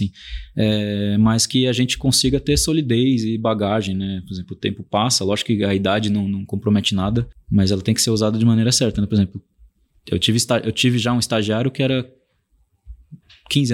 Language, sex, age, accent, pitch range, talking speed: Portuguese, male, 20-39, Brazilian, 100-130 Hz, 190 wpm